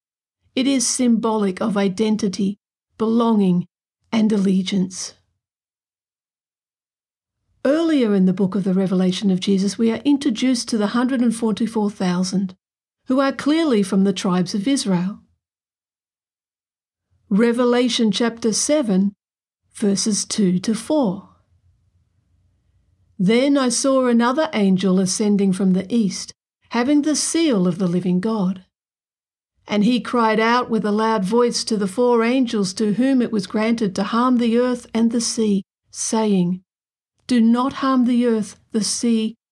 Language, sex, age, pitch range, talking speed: English, female, 50-69, 185-240 Hz, 130 wpm